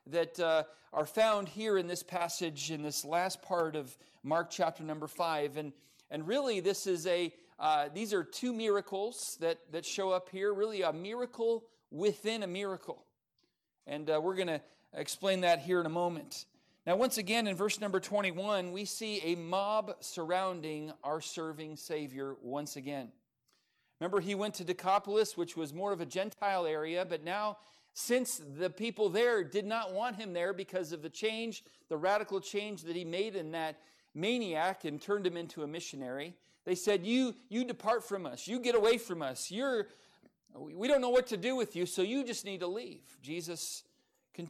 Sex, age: male, 40-59